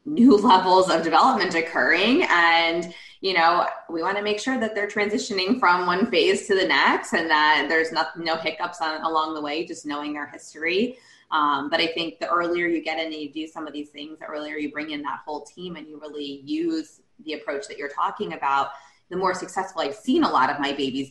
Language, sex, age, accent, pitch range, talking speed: English, female, 20-39, American, 145-185 Hz, 220 wpm